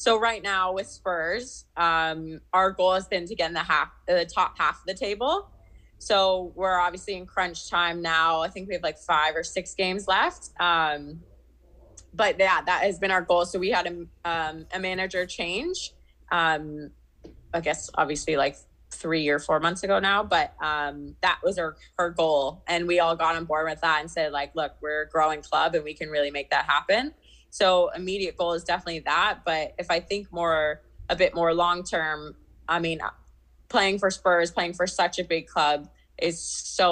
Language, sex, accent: English, female, American